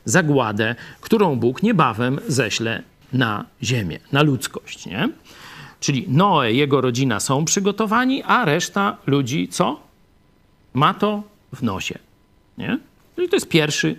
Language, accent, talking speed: Polish, native, 125 wpm